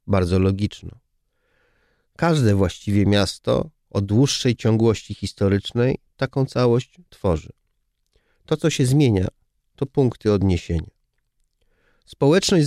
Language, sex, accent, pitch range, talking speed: Polish, male, native, 105-135 Hz, 95 wpm